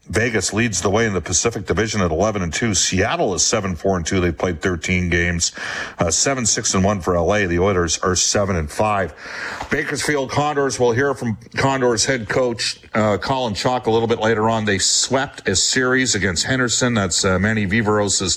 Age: 50-69